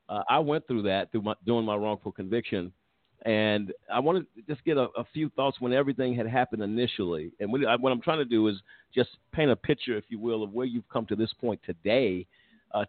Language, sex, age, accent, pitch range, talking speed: English, male, 50-69, American, 105-125 Hz, 235 wpm